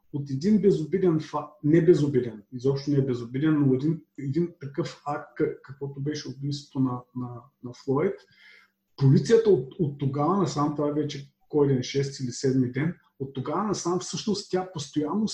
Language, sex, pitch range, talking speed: Bulgarian, male, 140-175 Hz, 155 wpm